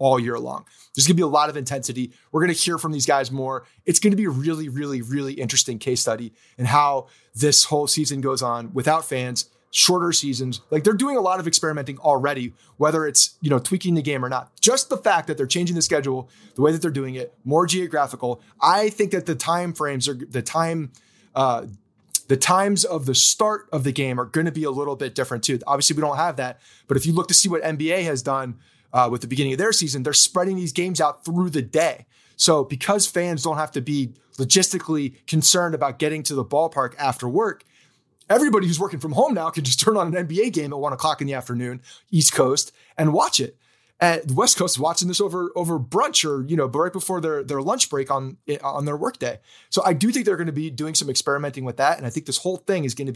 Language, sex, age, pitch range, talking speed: English, male, 30-49, 135-170 Hz, 245 wpm